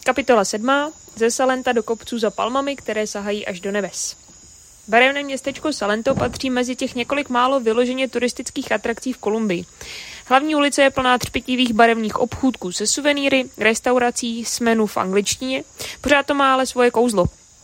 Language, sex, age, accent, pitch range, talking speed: Czech, female, 20-39, native, 225-270 Hz, 155 wpm